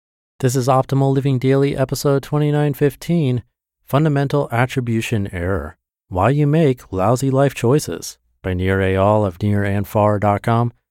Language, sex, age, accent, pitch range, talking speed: English, male, 30-49, American, 85-110 Hz, 115 wpm